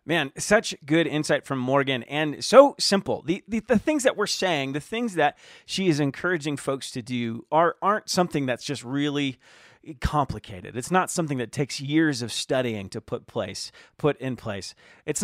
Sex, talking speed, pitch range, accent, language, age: male, 185 wpm, 125-175 Hz, American, English, 30-49